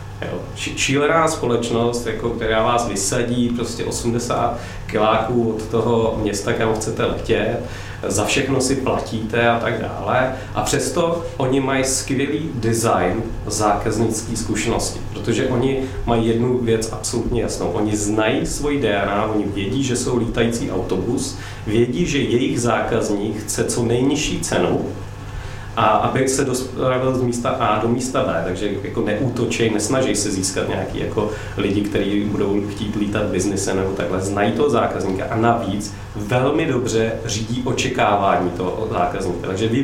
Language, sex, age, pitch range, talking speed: Czech, male, 40-59, 100-120 Hz, 145 wpm